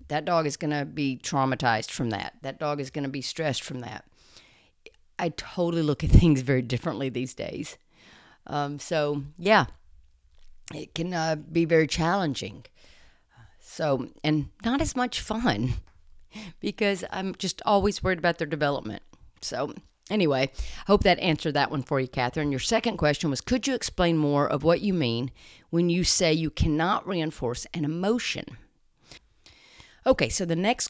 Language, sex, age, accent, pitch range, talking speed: English, female, 50-69, American, 140-185 Hz, 165 wpm